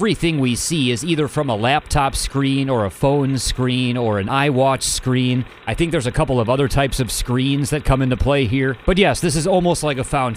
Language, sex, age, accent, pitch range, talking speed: English, male, 30-49, American, 120-145 Hz, 230 wpm